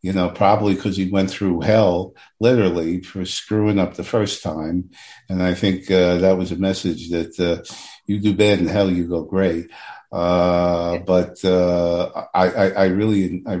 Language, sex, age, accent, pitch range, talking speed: English, male, 50-69, American, 90-105 Hz, 180 wpm